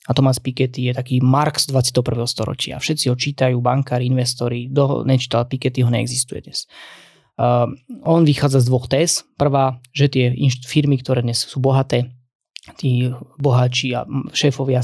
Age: 20-39